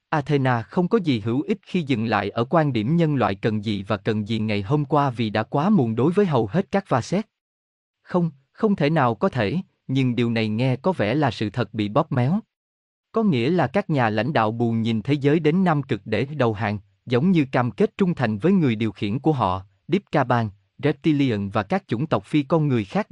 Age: 20-39